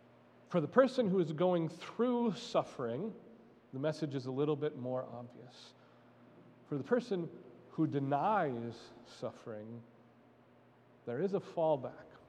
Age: 40-59